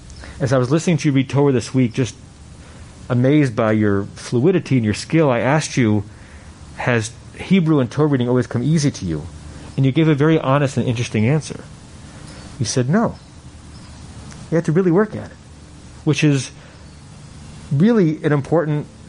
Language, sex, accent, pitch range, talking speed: English, male, American, 110-150 Hz, 175 wpm